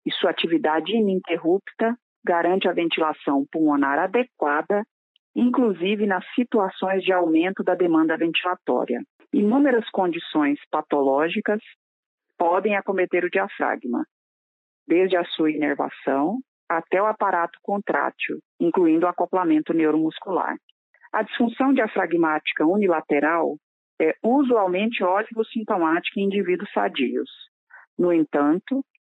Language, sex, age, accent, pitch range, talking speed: Portuguese, female, 40-59, Brazilian, 160-225 Hz, 100 wpm